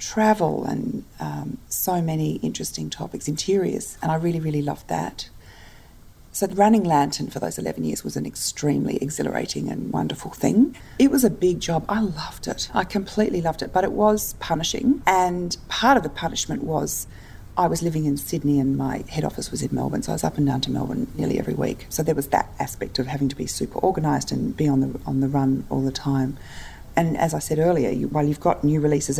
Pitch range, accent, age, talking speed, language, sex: 135-180 Hz, Australian, 40-59, 220 wpm, English, female